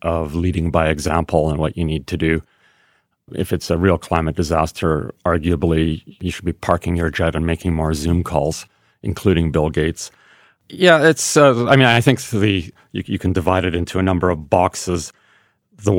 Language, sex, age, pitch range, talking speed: English, male, 40-59, 80-95 Hz, 190 wpm